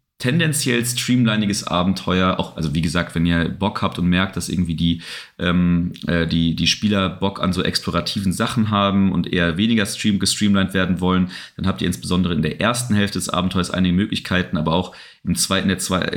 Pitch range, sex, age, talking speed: 90-100 Hz, male, 30-49, 185 wpm